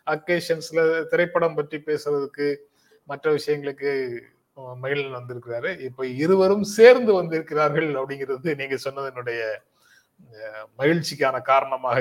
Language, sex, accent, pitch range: Tamil, male, native, 125-175 Hz